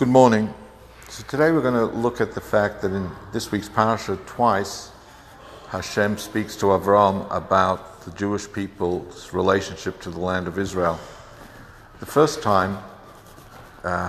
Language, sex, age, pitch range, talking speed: English, male, 60-79, 90-105 Hz, 150 wpm